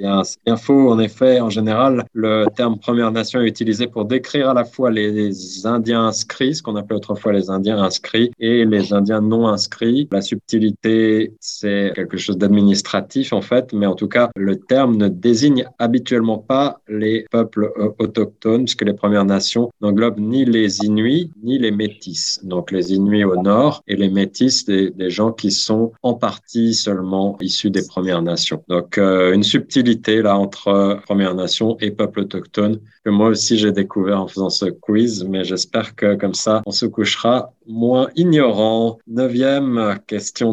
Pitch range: 100-120 Hz